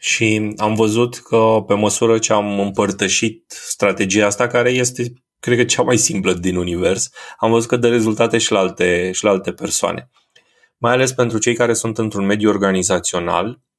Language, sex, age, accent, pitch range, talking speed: Romanian, male, 20-39, native, 100-120 Hz, 180 wpm